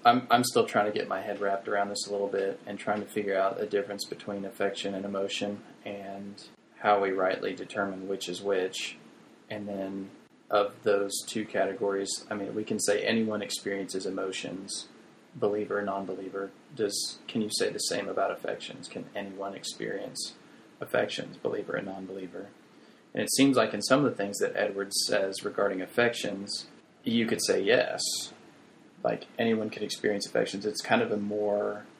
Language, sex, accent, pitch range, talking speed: English, male, American, 100-110 Hz, 175 wpm